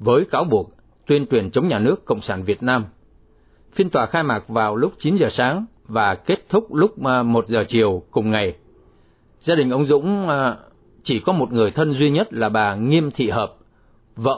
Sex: male